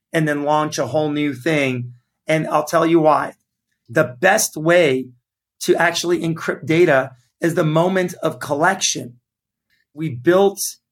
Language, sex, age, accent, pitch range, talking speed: English, male, 40-59, American, 150-185 Hz, 145 wpm